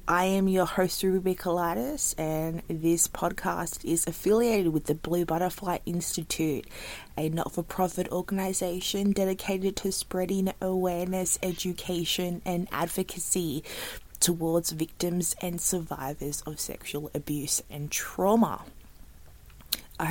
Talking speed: 105 wpm